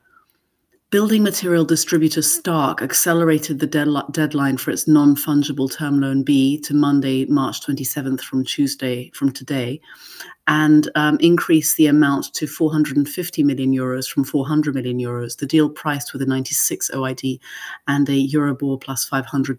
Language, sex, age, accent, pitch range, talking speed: English, female, 30-49, British, 135-160 Hz, 140 wpm